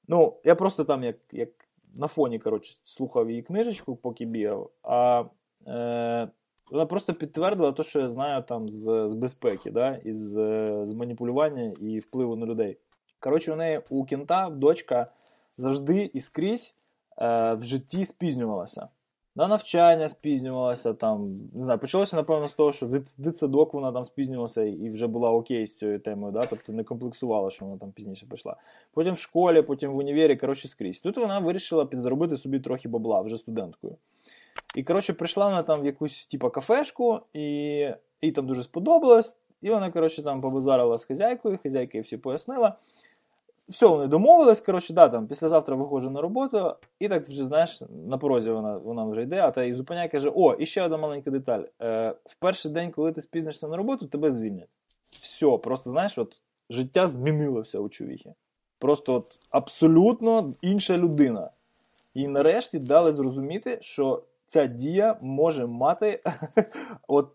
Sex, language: male, Ukrainian